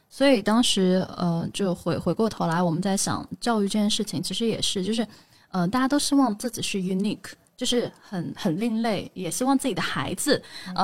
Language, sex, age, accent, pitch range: Chinese, female, 10-29, native, 175-235 Hz